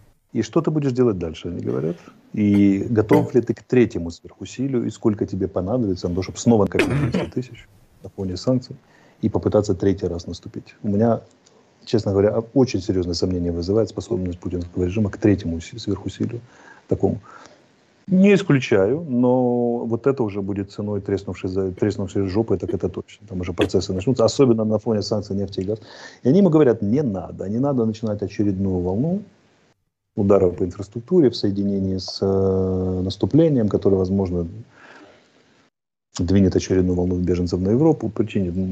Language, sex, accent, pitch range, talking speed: Russian, male, native, 95-115 Hz, 155 wpm